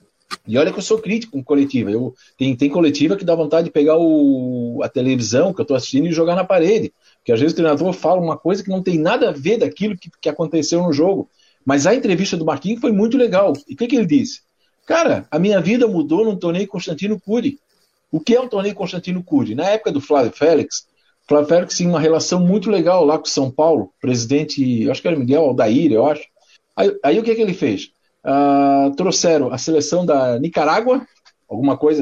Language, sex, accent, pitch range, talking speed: Portuguese, male, Brazilian, 150-220 Hz, 220 wpm